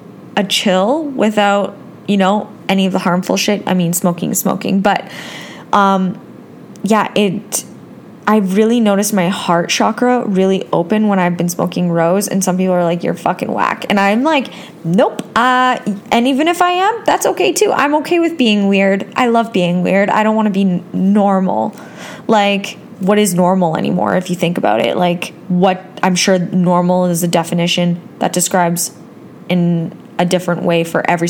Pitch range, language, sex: 185-220 Hz, English, female